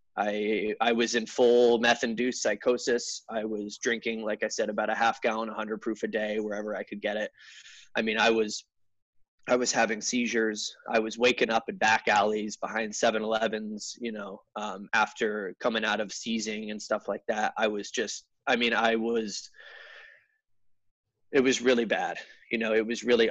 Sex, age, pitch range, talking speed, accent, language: male, 20-39, 105-120 Hz, 185 wpm, American, English